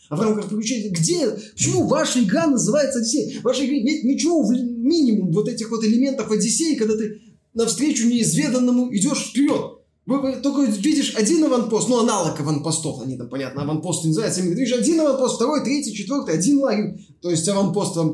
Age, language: 20-39, Russian